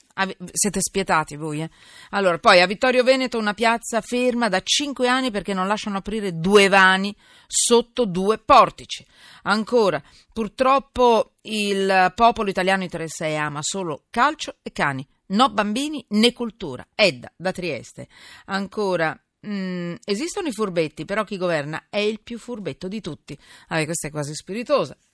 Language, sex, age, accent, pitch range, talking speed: Italian, female, 40-59, native, 170-230 Hz, 145 wpm